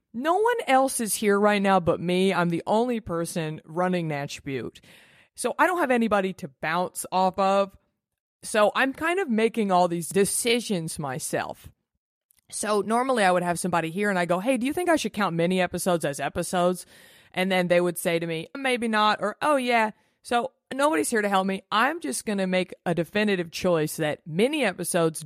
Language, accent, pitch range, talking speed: English, American, 170-215 Hz, 200 wpm